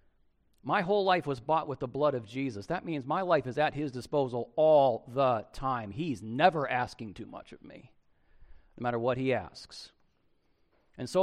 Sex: male